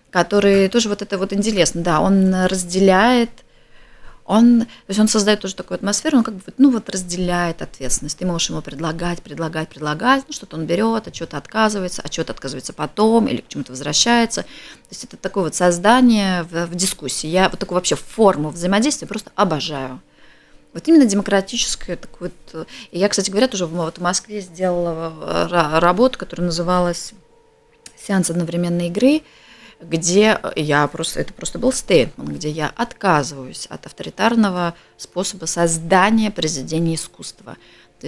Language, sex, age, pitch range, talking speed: Russian, female, 20-39, 165-215 Hz, 155 wpm